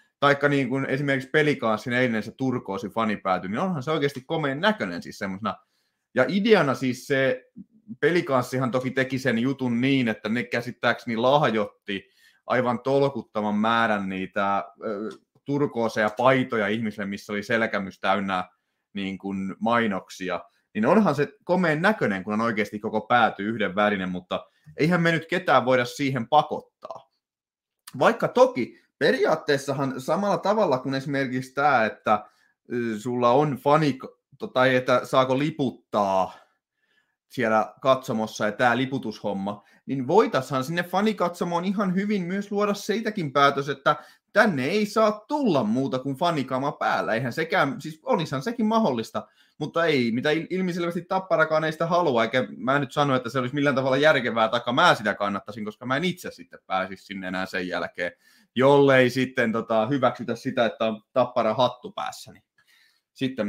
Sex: male